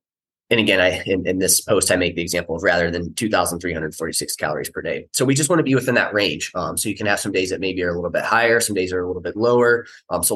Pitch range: 85-110 Hz